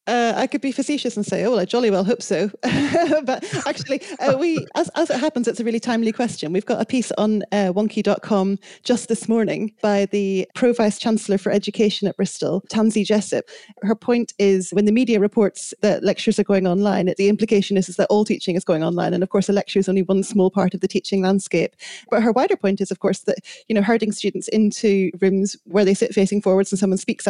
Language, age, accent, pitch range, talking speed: English, 30-49, British, 190-220 Hz, 235 wpm